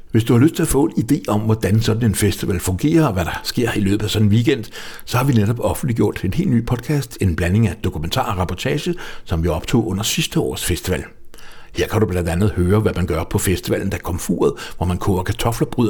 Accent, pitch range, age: Danish, 95-115 Hz, 60-79